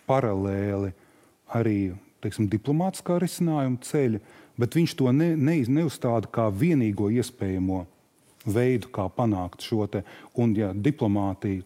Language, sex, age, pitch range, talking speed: English, male, 30-49, 105-140 Hz, 110 wpm